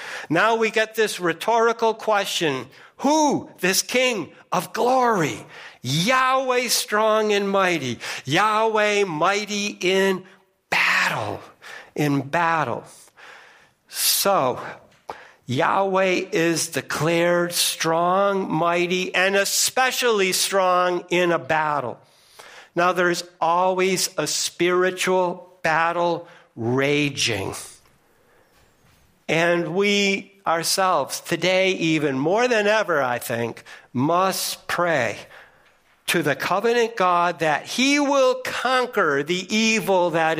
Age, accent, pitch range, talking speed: 60-79, American, 155-205 Hz, 95 wpm